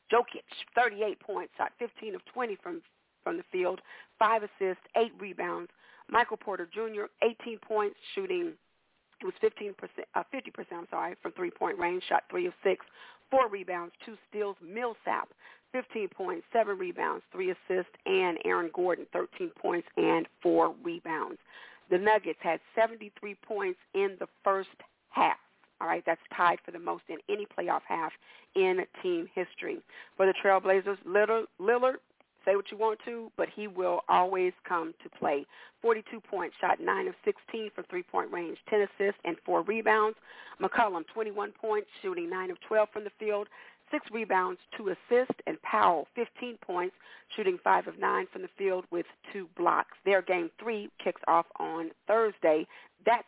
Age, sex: 40-59, female